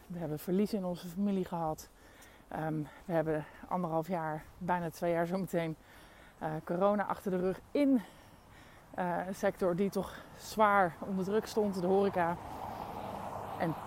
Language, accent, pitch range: Dutch, Dutch, 175-215 Hz